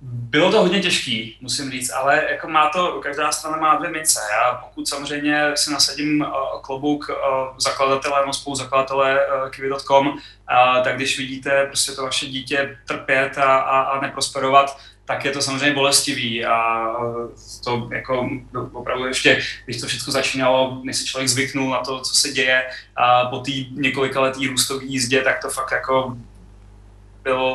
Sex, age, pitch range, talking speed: male, 20-39, 130-145 Hz, 155 wpm